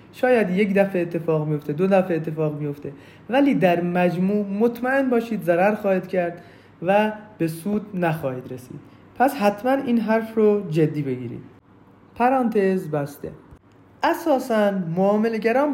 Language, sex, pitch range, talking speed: Persian, male, 175-240 Hz, 125 wpm